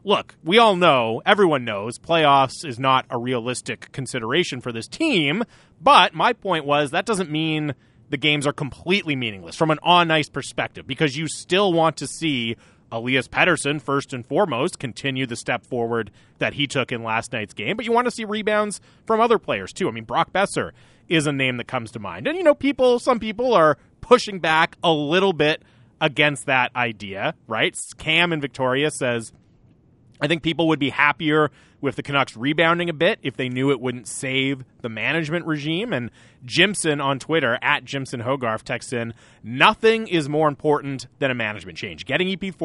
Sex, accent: male, American